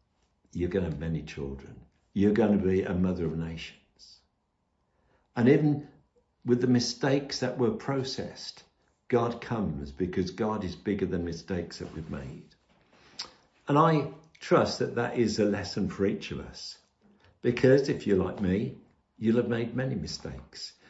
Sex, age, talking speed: male, 60-79, 150 wpm